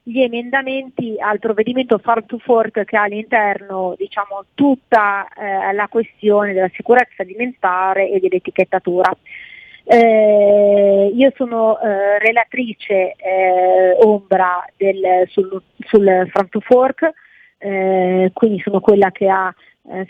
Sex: female